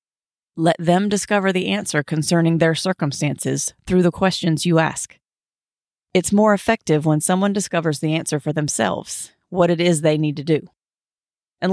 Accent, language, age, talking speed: American, English, 40-59, 160 wpm